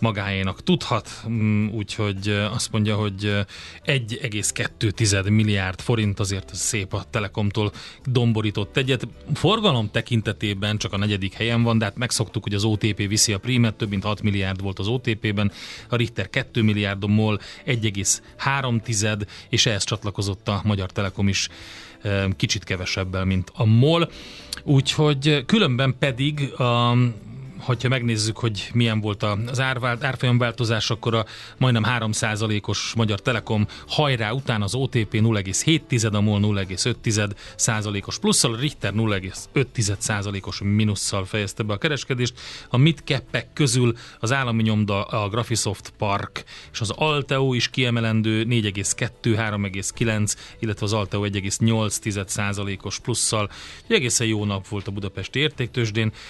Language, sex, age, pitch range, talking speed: Hungarian, male, 30-49, 105-125 Hz, 125 wpm